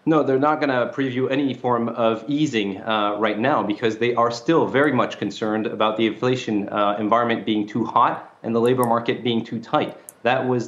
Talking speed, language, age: 210 wpm, English, 30-49